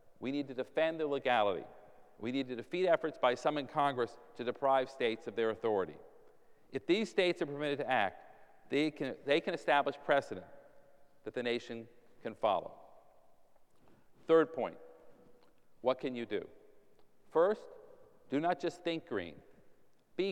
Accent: American